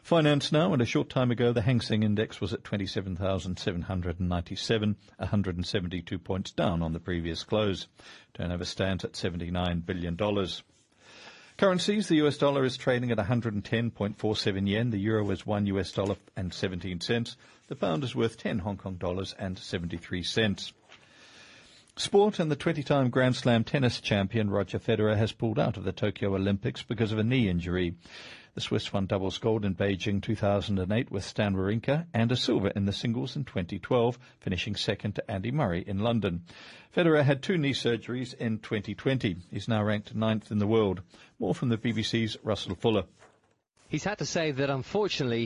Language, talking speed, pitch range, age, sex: English, 170 wpm, 100-130 Hz, 50-69, male